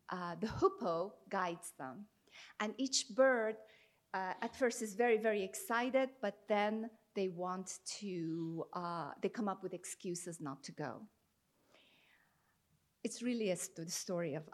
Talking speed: 140 wpm